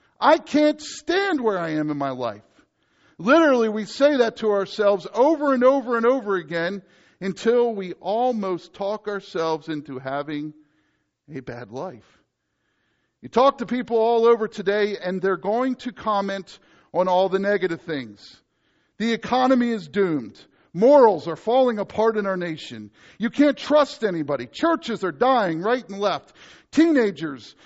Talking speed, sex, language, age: 150 wpm, male, English, 50-69